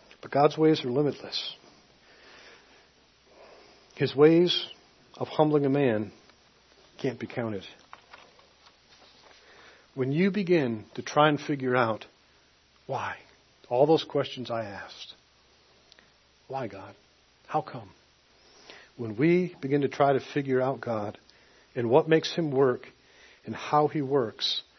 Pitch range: 115-140 Hz